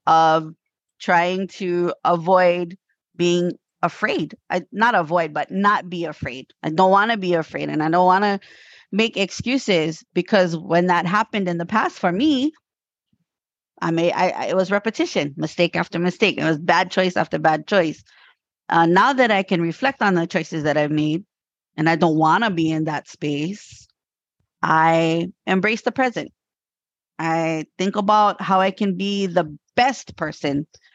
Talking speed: 165 wpm